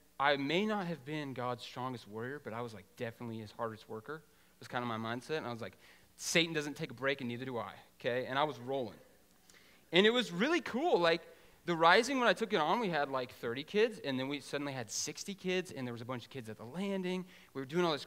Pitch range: 115-150 Hz